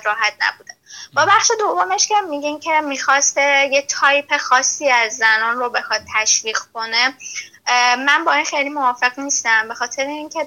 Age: 10-29